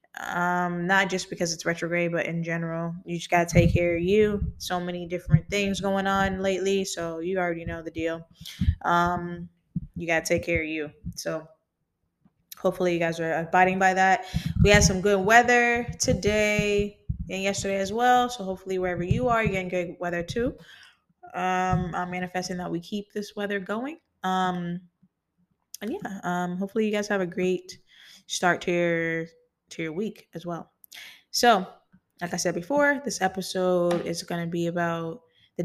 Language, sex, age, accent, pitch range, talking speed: English, female, 10-29, American, 165-195 Hz, 175 wpm